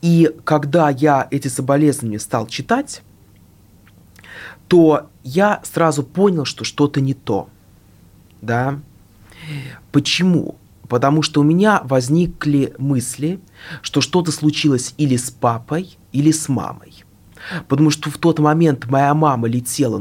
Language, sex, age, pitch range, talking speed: Russian, male, 20-39, 105-155 Hz, 125 wpm